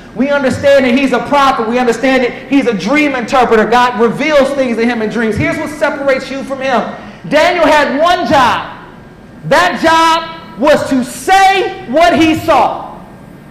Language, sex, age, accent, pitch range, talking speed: English, male, 40-59, American, 260-340 Hz, 170 wpm